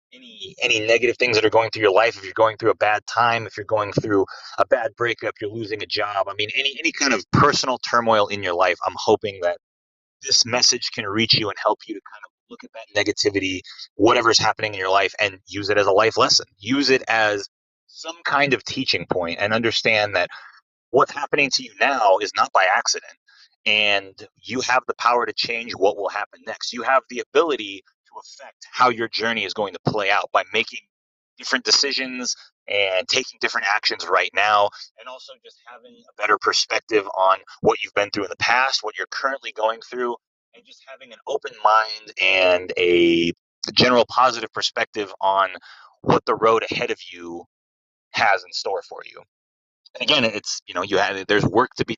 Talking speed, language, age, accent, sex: 205 wpm, English, 30-49, American, male